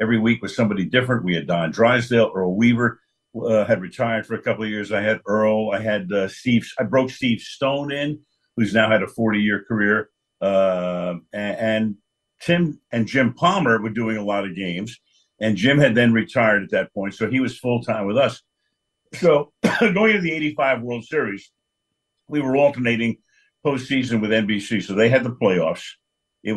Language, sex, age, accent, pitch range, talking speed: English, male, 60-79, American, 105-140 Hz, 190 wpm